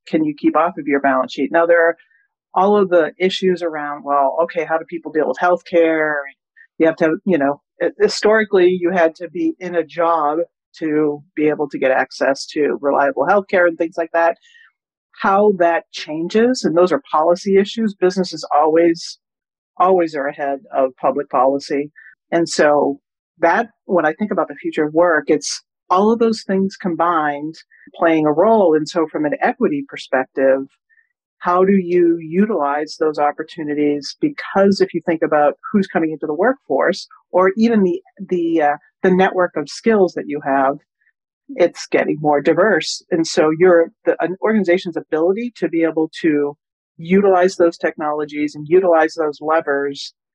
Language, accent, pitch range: English, American, 150-185 Hz